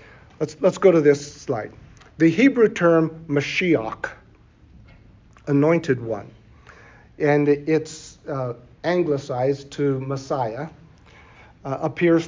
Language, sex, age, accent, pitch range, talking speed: English, male, 50-69, American, 140-170 Hz, 100 wpm